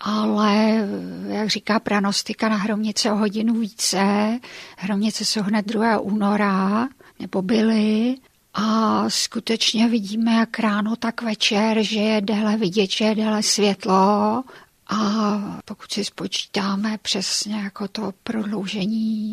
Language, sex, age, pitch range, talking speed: Czech, female, 50-69, 200-220 Hz, 115 wpm